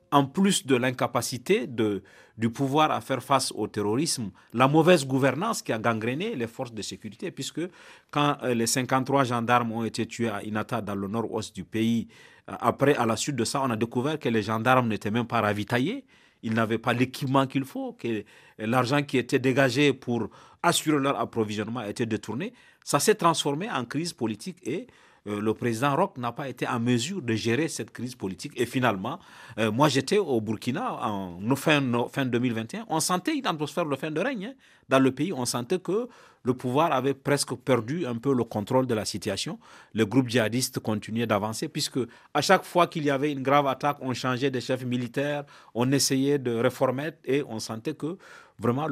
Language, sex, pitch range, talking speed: French, male, 115-145 Hz, 195 wpm